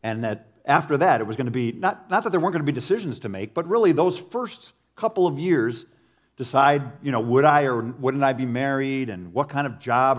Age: 50-69